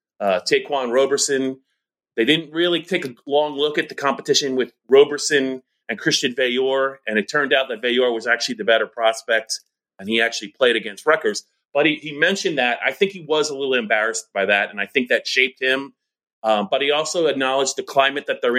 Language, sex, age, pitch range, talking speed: English, male, 30-49, 125-165 Hz, 205 wpm